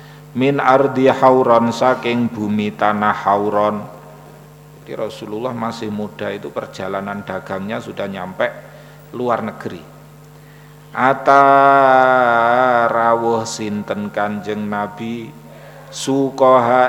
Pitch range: 105-135 Hz